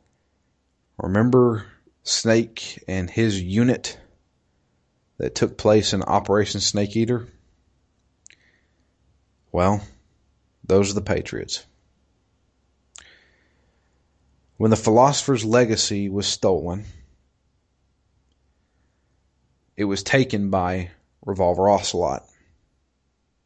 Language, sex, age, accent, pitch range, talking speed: English, male, 30-49, American, 65-105 Hz, 75 wpm